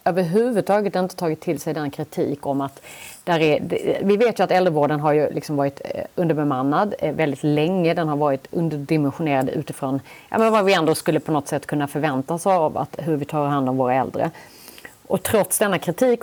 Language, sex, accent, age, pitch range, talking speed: Swedish, female, native, 30-49, 150-195 Hz, 195 wpm